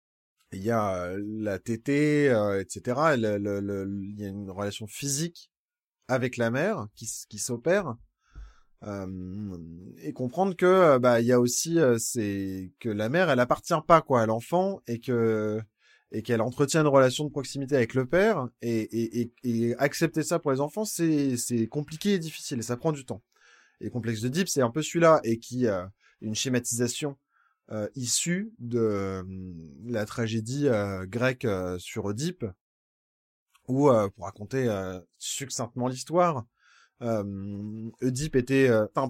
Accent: French